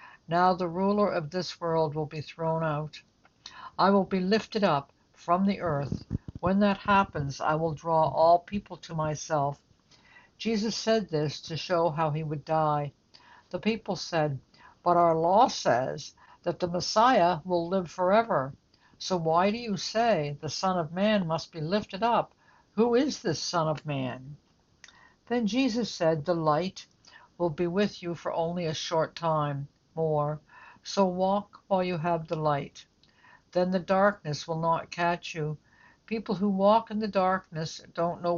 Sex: female